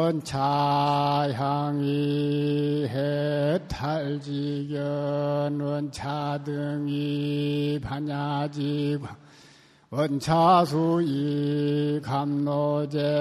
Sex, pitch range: male, 145-150 Hz